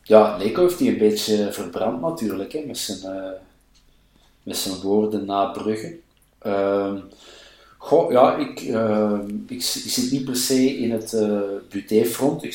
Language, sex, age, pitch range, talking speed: Dutch, male, 50-69, 105-130 Hz, 155 wpm